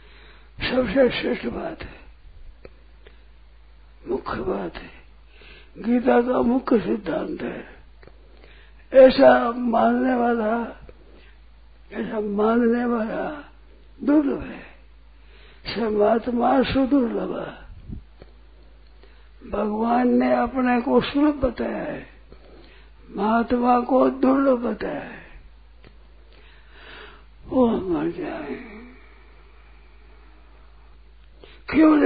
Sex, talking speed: male, 70 wpm